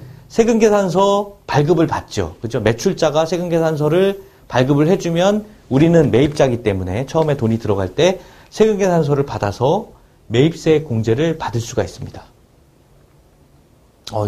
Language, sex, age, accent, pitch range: Korean, male, 40-59, native, 115-175 Hz